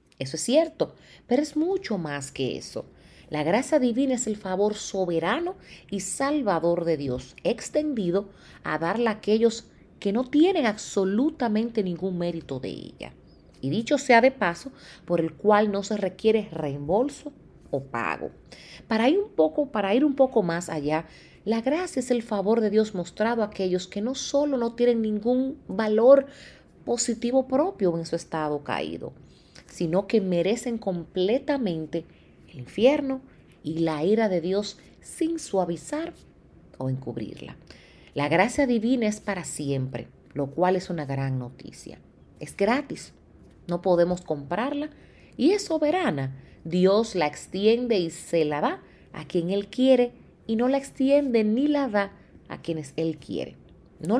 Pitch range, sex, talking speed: 165-250 Hz, female, 155 wpm